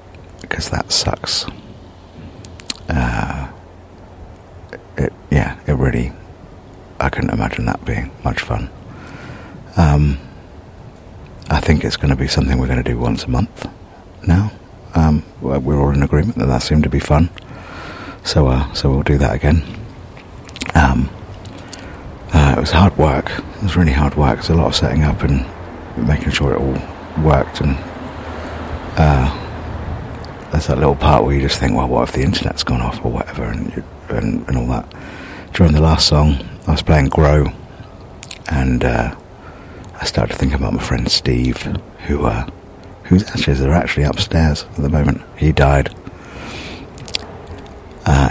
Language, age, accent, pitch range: English, 50-69, British, 70-95 Hz